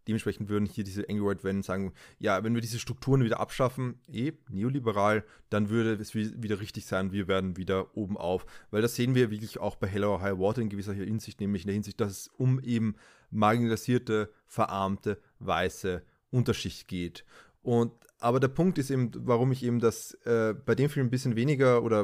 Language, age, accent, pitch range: German, 20-39, German, 105-125 Hz